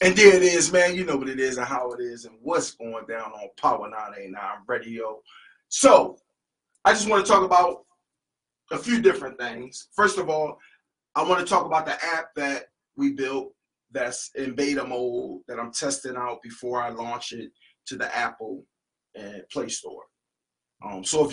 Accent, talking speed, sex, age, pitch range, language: American, 185 wpm, male, 30-49, 125-175 Hz, English